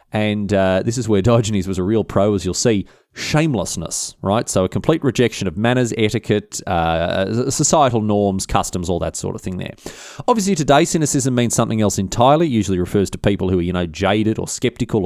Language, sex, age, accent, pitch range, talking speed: English, male, 30-49, Australian, 95-125 Hz, 205 wpm